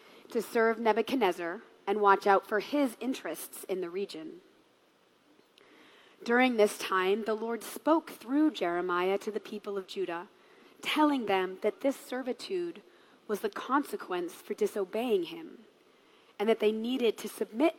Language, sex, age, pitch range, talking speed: English, female, 30-49, 200-275 Hz, 140 wpm